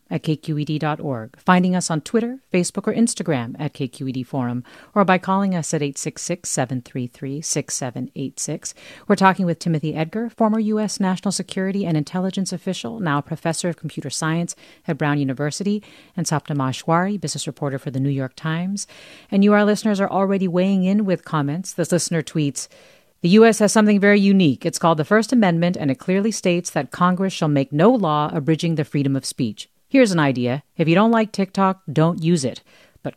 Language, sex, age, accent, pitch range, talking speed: English, female, 40-59, American, 150-195 Hz, 175 wpm